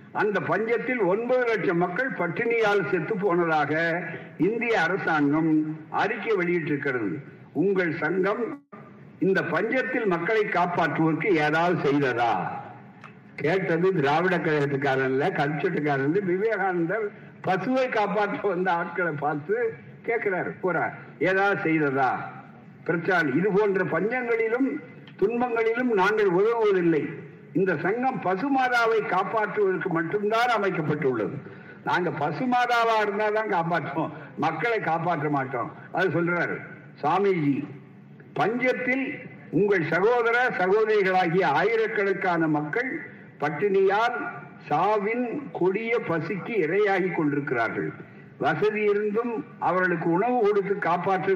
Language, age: Tamil, 60-79